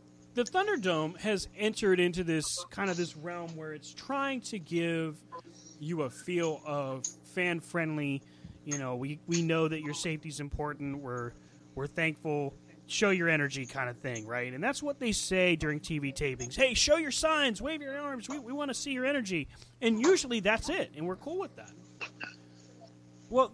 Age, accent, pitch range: 30-49, American, 130-205 Hz